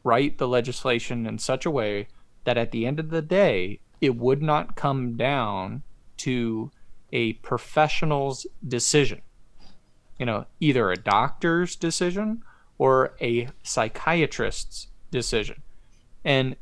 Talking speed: 125 wpm